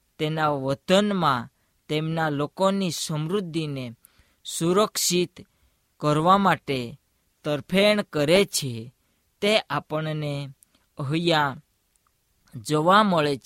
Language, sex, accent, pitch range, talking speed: Hindi, female, native, 140-190 Hz, 45 wpm